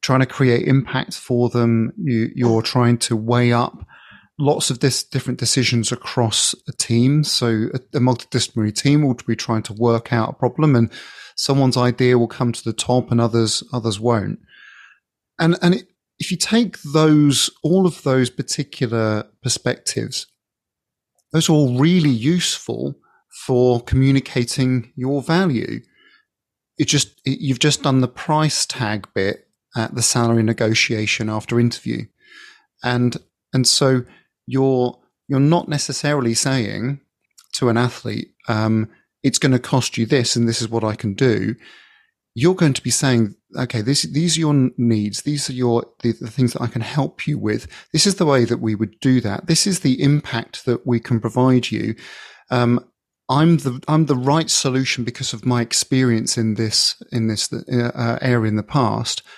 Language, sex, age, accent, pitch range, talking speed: English, male, 30-49, British, 115-140 Hz, 170 wpm